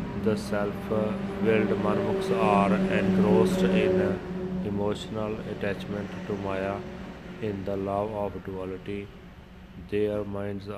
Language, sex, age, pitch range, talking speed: Punjabi, male, 30-49, 95-105 Hz, 100 wpm